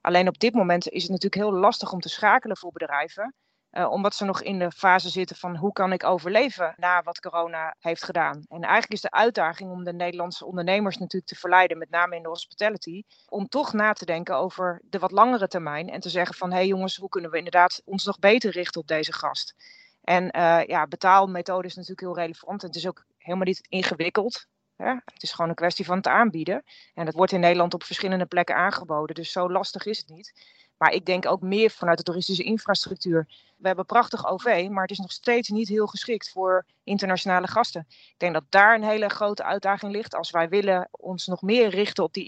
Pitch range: 175-205 Hz